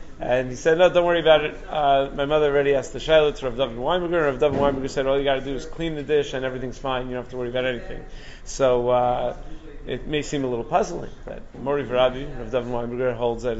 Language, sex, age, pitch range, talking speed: English, male, 30-49, 130-160 Hz, 245 wpm